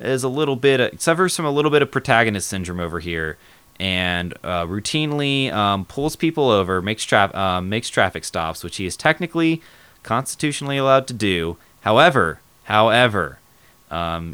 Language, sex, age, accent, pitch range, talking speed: English, male, 20-39, American, 90-125 Hz, 165 wpm